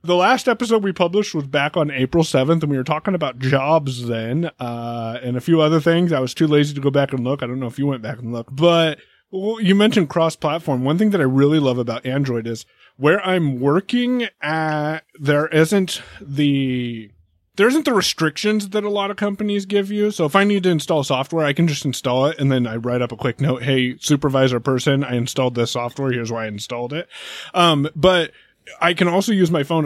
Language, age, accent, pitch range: English, 30-49, American, 125-165 Hz